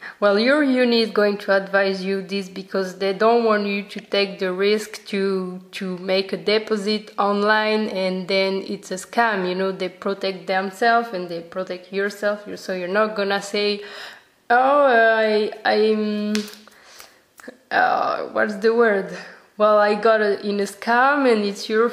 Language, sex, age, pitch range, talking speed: English, female, 20-39, 195-225 Hz, 165 wpm